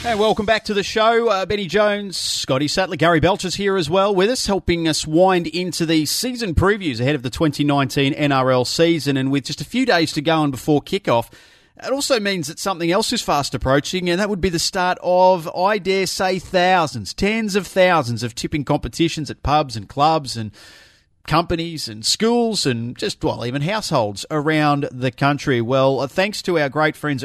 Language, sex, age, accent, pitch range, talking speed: English, male, 30-49, Australian, 130-185 Hz, 200 wpm